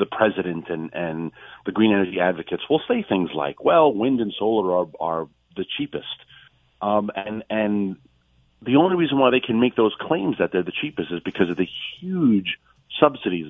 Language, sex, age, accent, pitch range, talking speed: English, male, 40-59, American, 85-115 Hz, 185 wpm